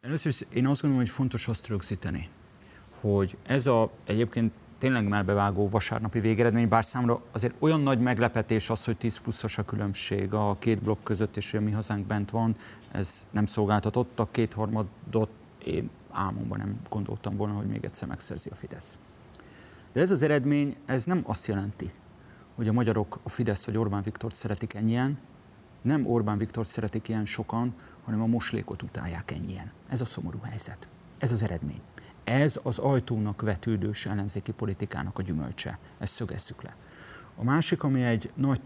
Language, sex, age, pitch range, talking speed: Hungarian, male, 30-49, 105-120 Hz, 160 wpm